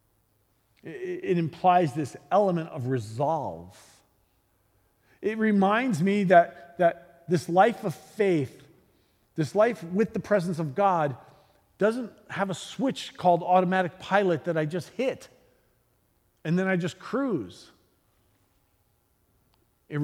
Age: 40-59